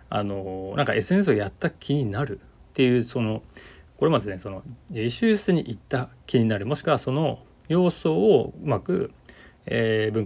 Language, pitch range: Japanese, 100-140 Hz